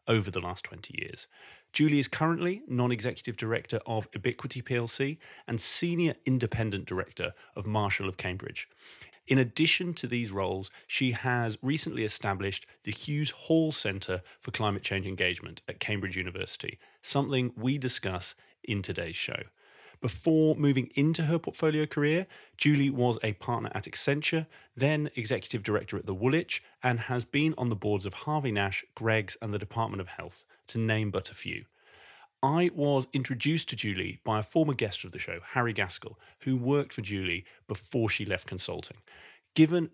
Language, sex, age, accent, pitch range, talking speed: English, male, 30-49, British, 105-140 Hz, 160 wpm